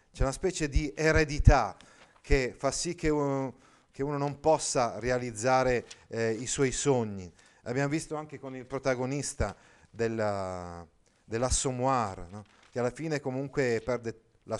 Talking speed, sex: 140 wpm, male